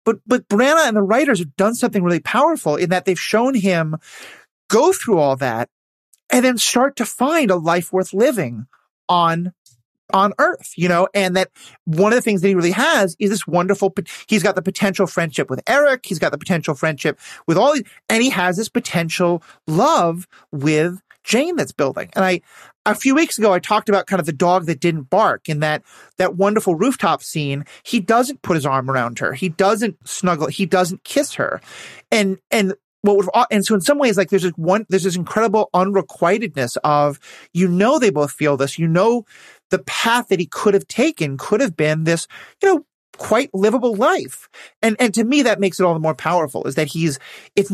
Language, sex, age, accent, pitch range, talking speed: English, male, 30-49, American, 165-215 Hz, 210 wpm